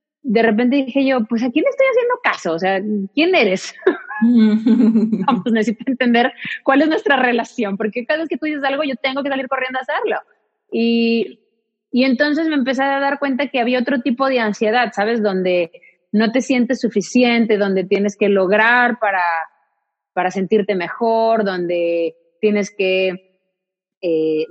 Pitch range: 195-255 Hz